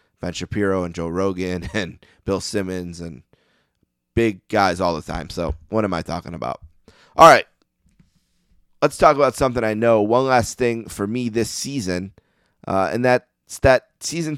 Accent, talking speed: American, 165 wpm